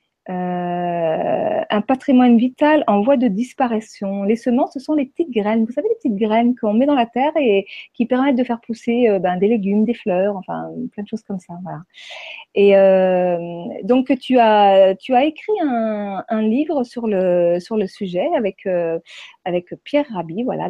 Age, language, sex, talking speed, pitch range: 40-59, French, female, 190 wpm, 190-265 Hz